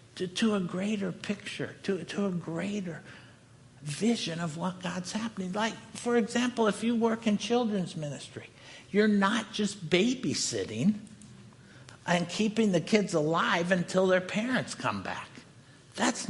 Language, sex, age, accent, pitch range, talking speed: English, male, 60-79, American, 170-235 Hz, 140 wpm